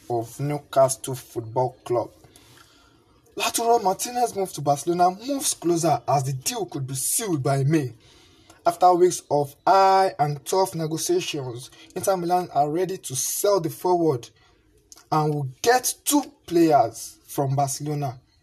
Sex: male